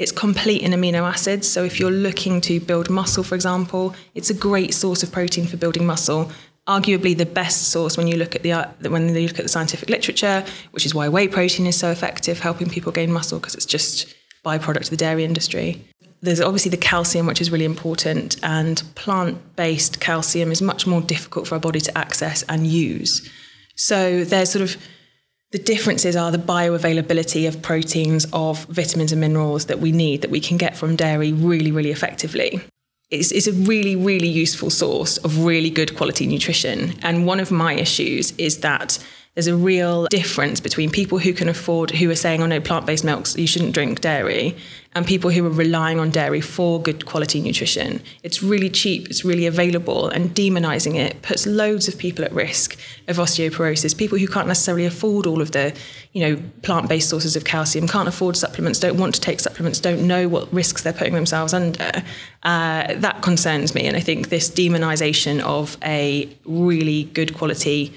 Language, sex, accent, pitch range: English, female, British, 160-180 Hz